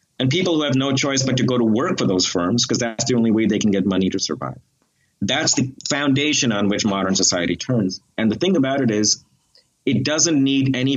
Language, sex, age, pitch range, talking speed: English, male, 30-49, 100-130 Hz, 235 wpm